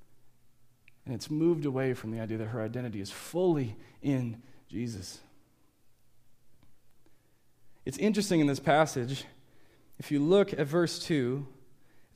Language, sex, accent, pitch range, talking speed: English, male, American, 115-145 Hz, 130 wpm